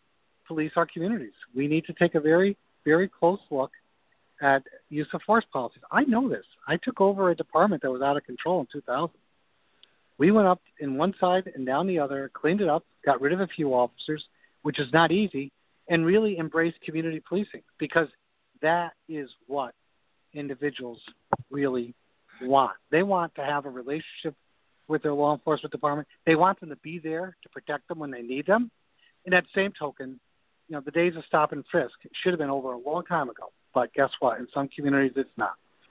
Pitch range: 140-180 Hz